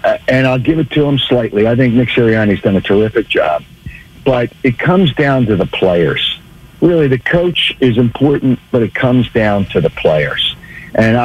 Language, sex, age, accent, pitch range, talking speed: English, male, 60-79, American, 110-140 Hz, 190 wpm